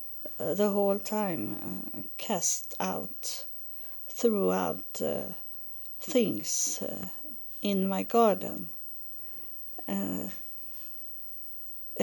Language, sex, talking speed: English, female, 75 wpm